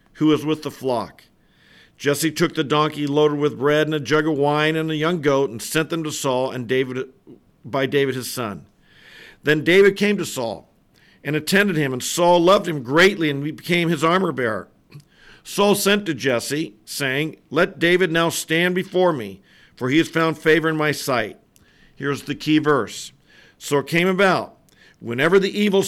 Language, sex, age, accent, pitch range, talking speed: English, male, 50-69, American, 140-170 Hz, 185 wpm